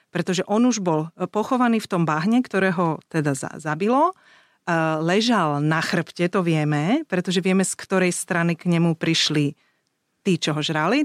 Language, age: Slovak, 30-49